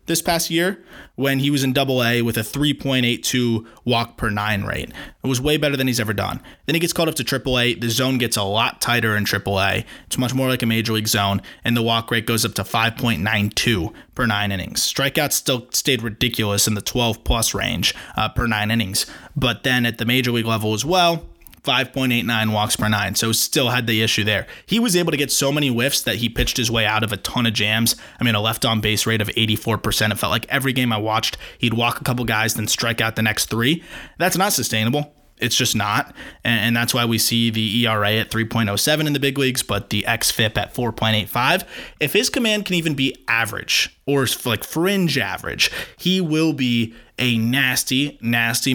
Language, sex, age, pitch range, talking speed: English, male, 20-39, 110-140 Hz, 220 wpm